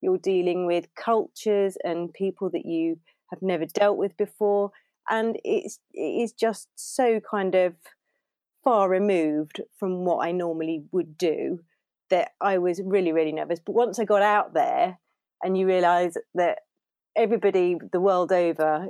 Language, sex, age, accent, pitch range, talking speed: English, female, 30-49, British, 170-200 Hz, 150 wpm